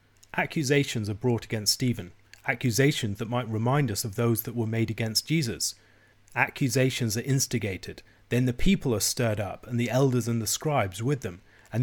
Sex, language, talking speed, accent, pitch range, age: male, English, 180 wpm, British, 110-130 Hz, 30-49